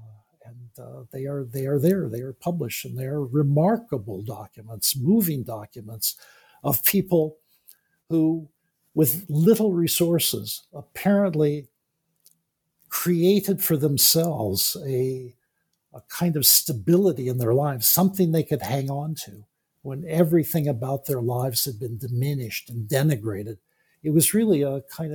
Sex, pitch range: male, 130-165 Hz